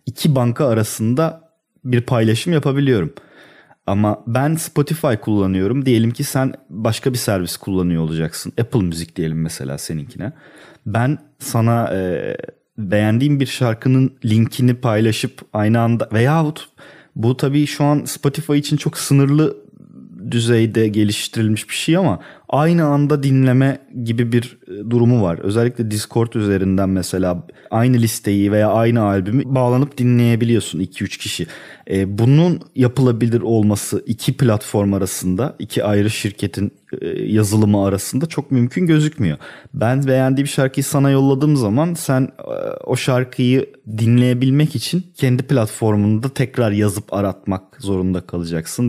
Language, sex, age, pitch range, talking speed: Turkish, male, 30-49, 105-135 Hz, 125 wpm